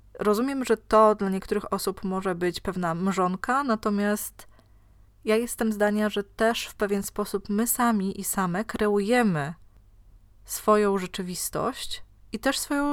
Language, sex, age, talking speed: Polish, female, 20-39, 135 wpm